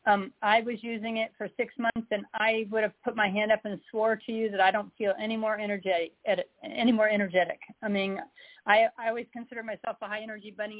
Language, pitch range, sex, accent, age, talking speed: English, 205-240 Hz, female, American, 40-59, 230 wpm